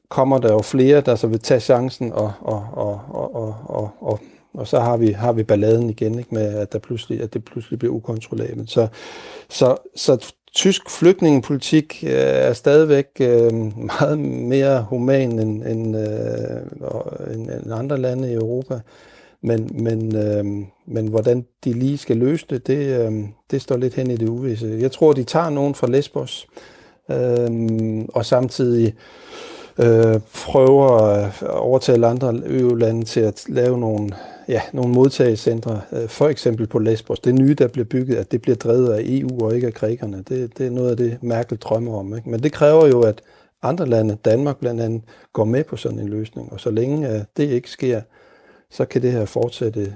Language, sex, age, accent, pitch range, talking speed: Danish, male, 60-79, native, 110-130 Hz, 165 wpm